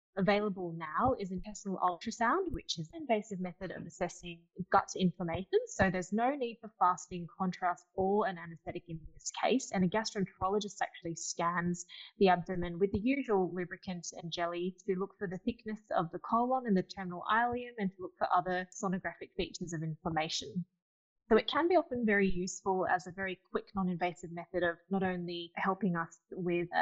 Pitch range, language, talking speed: 175-225 Hz, English, 180 wpm